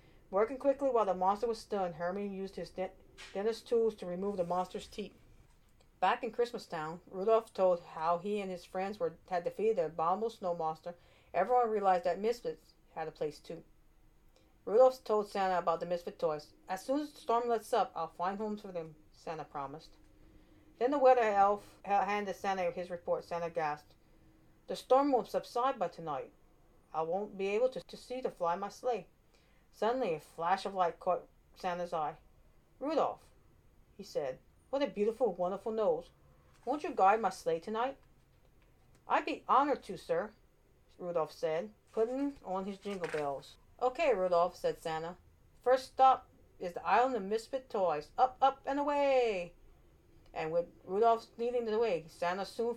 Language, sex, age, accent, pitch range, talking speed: English, female, 50-69, American, 175-240 Hz, 170 wpm